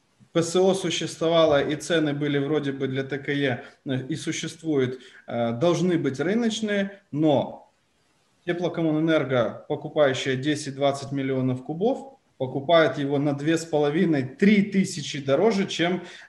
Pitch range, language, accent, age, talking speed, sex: 145-185 Hz, Ukrainian, native, 20-39, 100 wpm, male